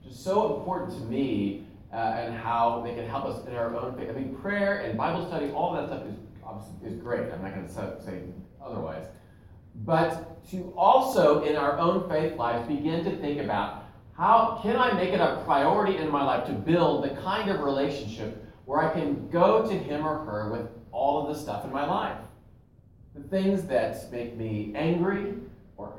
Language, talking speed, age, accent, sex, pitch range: English, 195 wpm, 40-59, American, male, 115-170 Hz